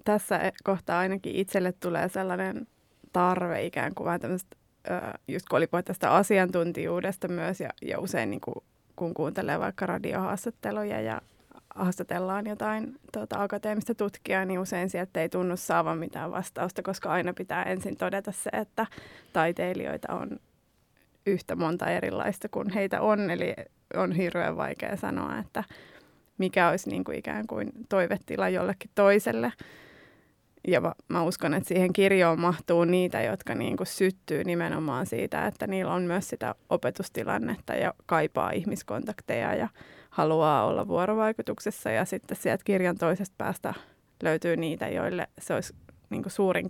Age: 20-39